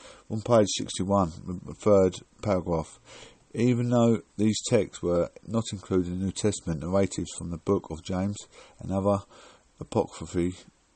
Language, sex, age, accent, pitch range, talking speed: English, male, 50-69, British, 85-100 Hz, 140 wpm